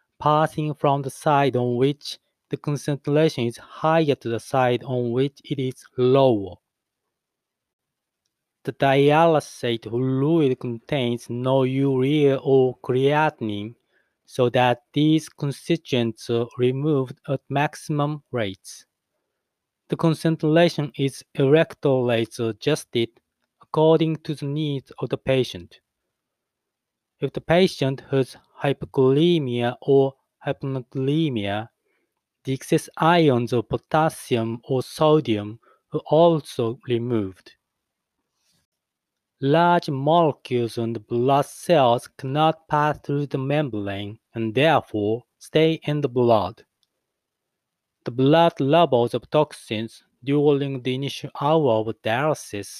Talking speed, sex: 105 wpm, male